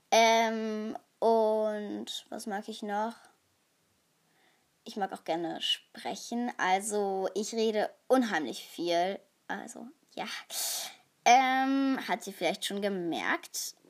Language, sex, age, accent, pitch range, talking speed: German, female, 20-39, German, 195-250 Hz, 105 wpm